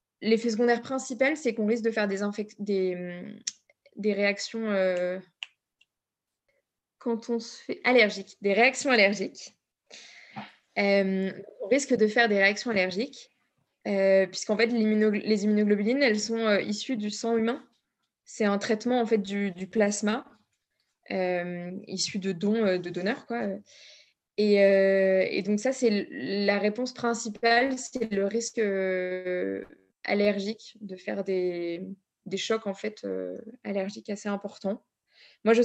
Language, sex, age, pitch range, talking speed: French, female, 20-39, 195-230 Hz, 140 wpm